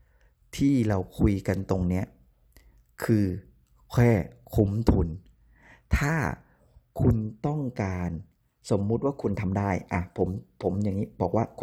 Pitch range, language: 75-120 Hz, Thai